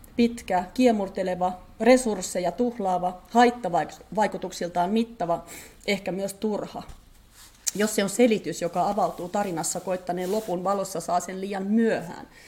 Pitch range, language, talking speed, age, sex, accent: 185-240 Hz, Finnish, 110 wpm, 30-49, female, native